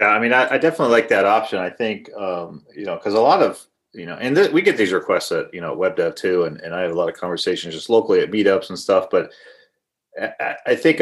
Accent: American